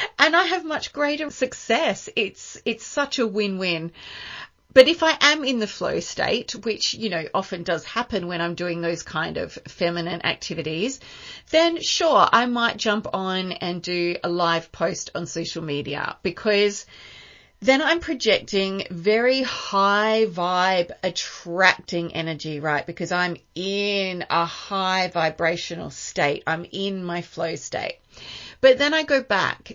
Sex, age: female, 40-59